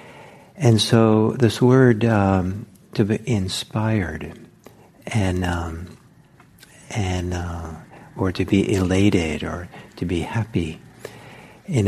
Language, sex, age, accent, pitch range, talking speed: English, male, 60-79, American, 95-120 Hz, 105 wpm